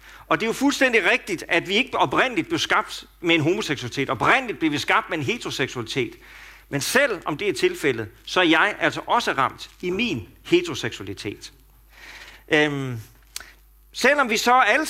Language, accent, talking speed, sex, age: Danish, native, 170 wpm, male, 40-59